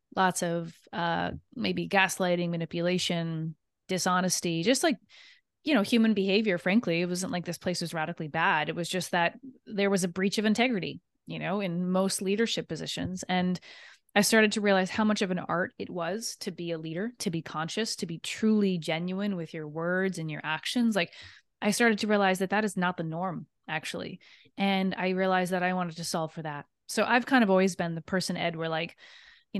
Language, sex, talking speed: English, female, 205 wpm